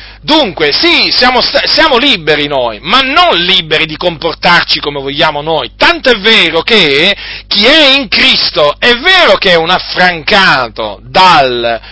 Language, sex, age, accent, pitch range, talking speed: Italian, male, 40-59, native, 140-230 Hz, 145 wpm